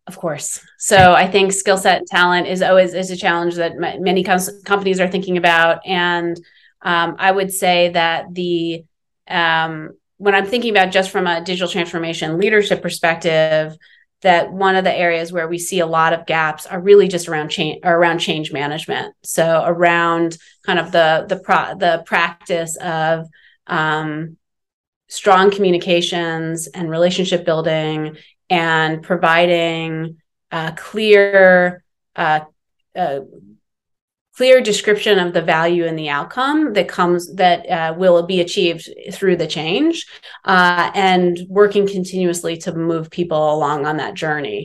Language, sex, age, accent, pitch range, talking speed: English, female, 30-49, American, 170-195 Hz, 150 wpm